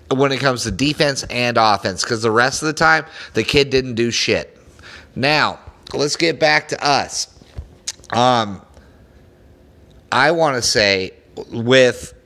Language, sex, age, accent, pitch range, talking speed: English, male, 30-49, American, 115-145 Hz, 140 wpm